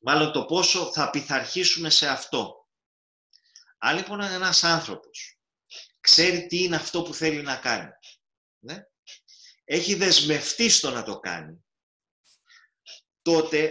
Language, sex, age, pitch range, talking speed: Greek, male, 30-49, 115-170 Hz, 120 wpm